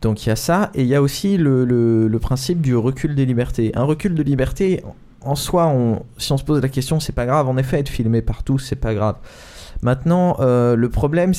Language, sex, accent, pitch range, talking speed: French, male, French, 115-150 Hz, 240 wpm